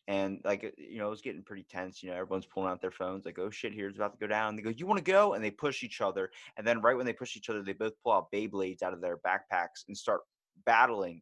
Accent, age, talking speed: American, 20-39, 300 wpm